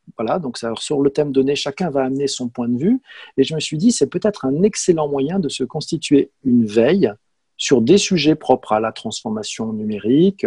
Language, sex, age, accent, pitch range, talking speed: French, male, 40-59, French, 120-175 Hz, 210 wpm